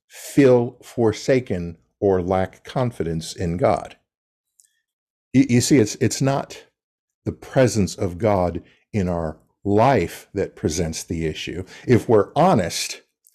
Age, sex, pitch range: 50-69, male, 95-130 Hz